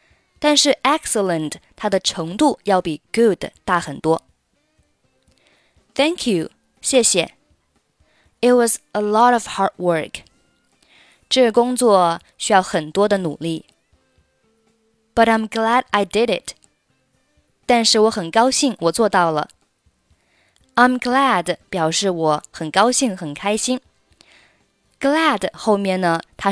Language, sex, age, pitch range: Chinese, female, 20-39, 175-240 Hz